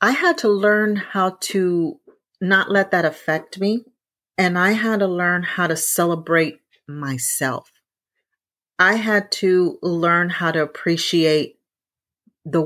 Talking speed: 135 wpm